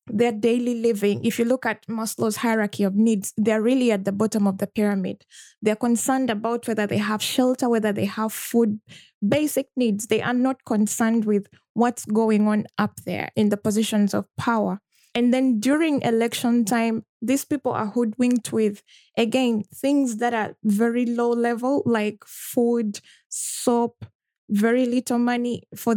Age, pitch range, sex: 20-39, 215-245 Hz, female